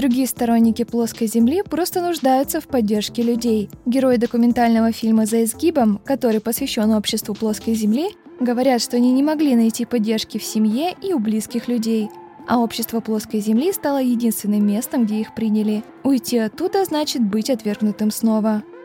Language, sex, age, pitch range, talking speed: Russian, female, 20-39, 220-265 Hz, 155 wpm